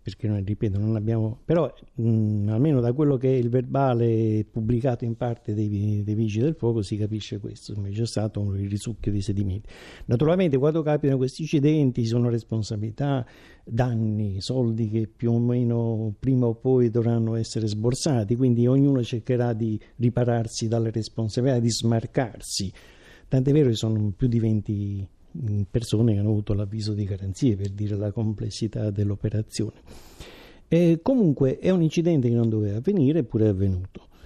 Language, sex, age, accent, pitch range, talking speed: Italian, male, 50-69, native, 110-135 Hz, 160 wpm